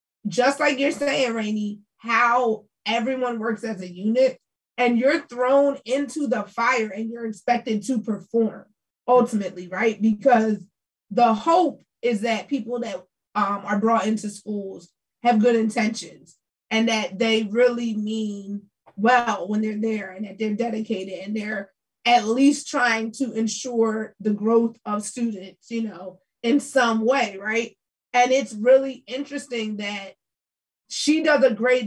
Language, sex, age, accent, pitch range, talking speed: English, female, 20-39, American, 215-270 Hz, 145 wpm